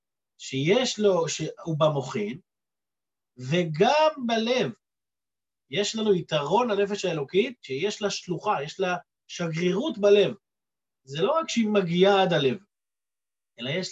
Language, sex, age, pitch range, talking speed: Hebrew, male, 30-49, 165-215 Hz, 115 wpm